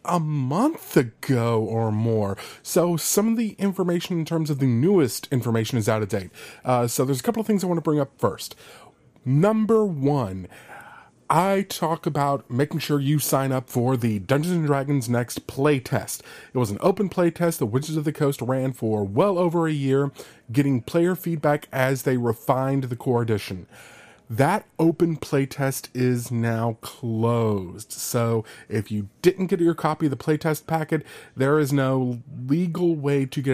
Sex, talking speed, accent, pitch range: male, 175 wpm, American, 115-155 Hz